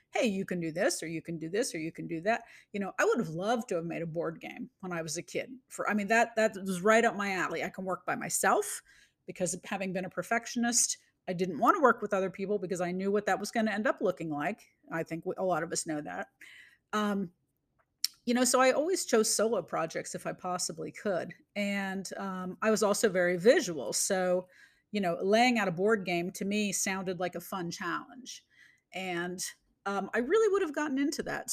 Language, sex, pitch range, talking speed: English, female, 180-230 Hz, 240 wpm